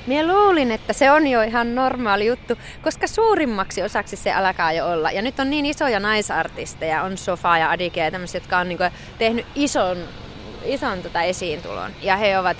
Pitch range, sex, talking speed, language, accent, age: 190-260 Hz, female, 185 wpm, Finnish, native, 30-49